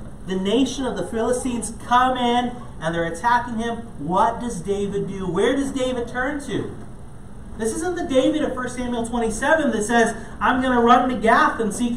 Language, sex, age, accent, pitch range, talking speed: English, male, 30-49, American, 165-230 Hz, 190 wpm